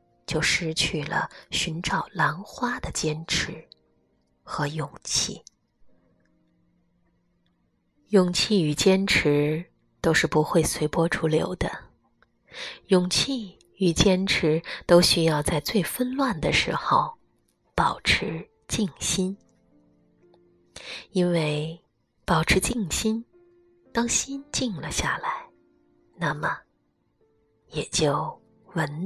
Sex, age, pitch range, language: female, 20-39, 155-205 Hz, Chinese